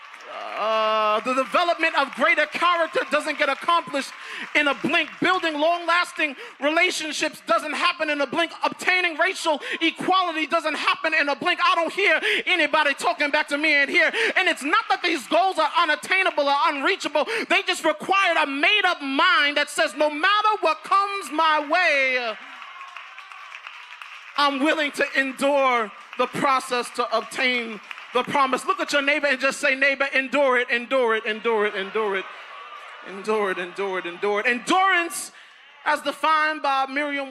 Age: 30-49